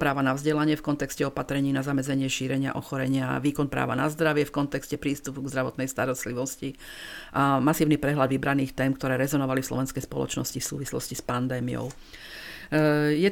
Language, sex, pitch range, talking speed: Slovak, female, 135-150 Hz, 160 wpm